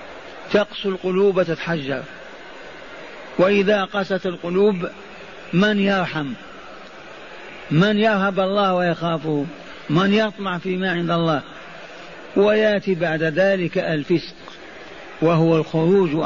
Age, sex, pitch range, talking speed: 50-69, male, 160-190 Hz, 85 wpm